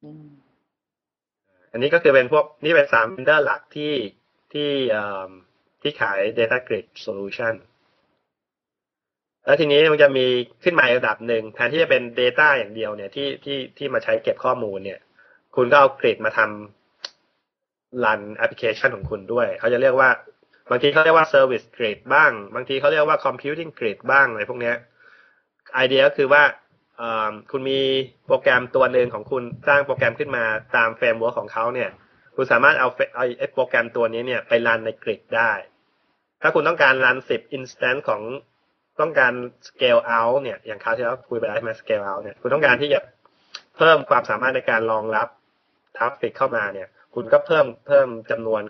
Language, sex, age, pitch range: Thai, male, 20-39, 110-155 Hz